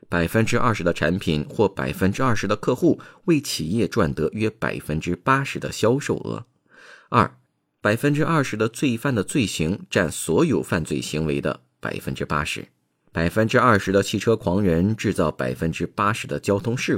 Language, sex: Chinese, male